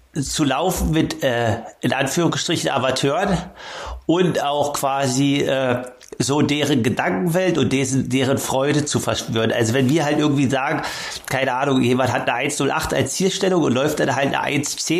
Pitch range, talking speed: 130-155 Hz, 155 wpm